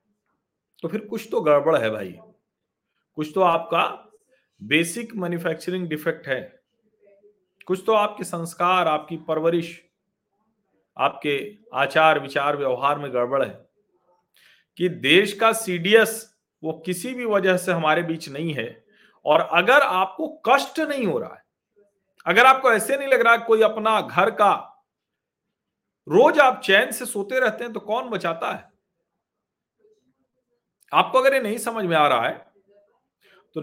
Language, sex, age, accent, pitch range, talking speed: Hindi, male, 40-59, native, 155-215 Hz, 140 wpm